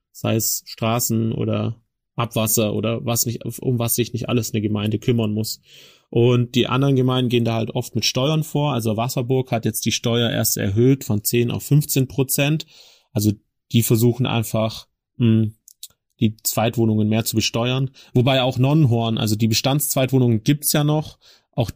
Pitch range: 110-130 Hz